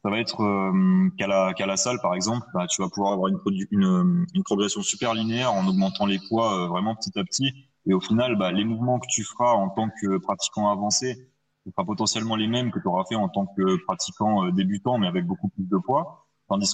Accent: French